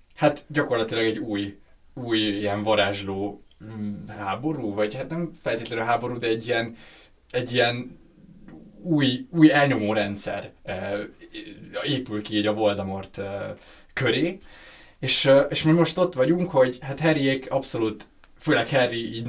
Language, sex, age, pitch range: Hungarian, male, 20-39, 100-130 Hz